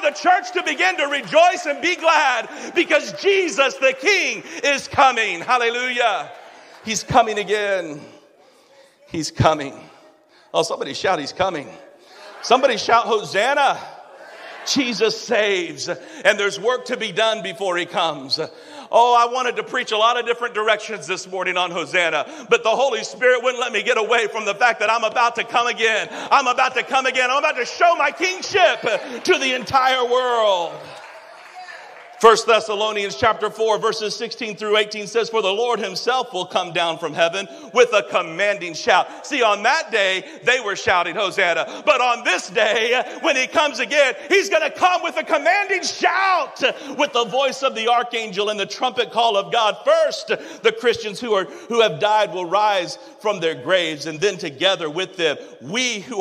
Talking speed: 175 wpm